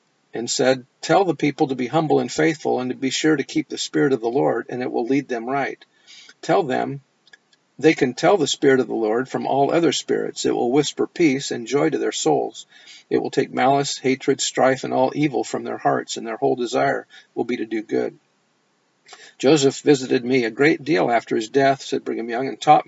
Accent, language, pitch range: American, English, 130-155 Hz